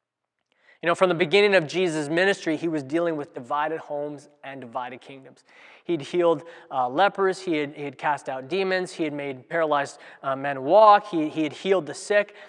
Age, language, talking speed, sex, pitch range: 20-39, English, 190 wpm, male, 155-200 Hz